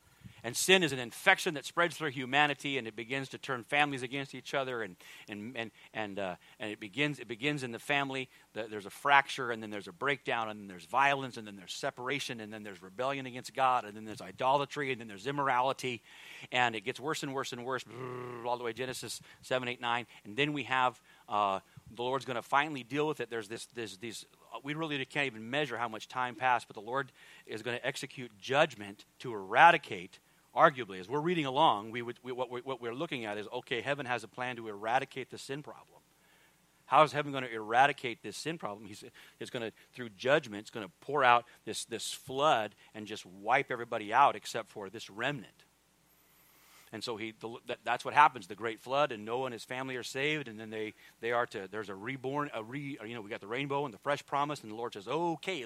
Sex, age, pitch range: male, 40-59, 115-140 Hz